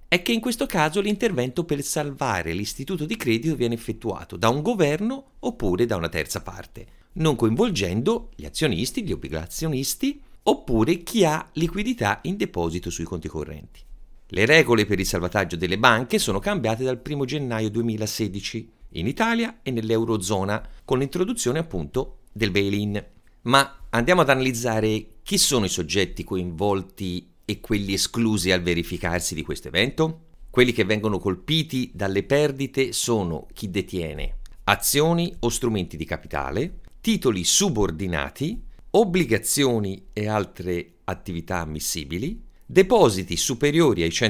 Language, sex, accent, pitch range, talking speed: Italian, male, native, 95-150 Hz, 135 wpm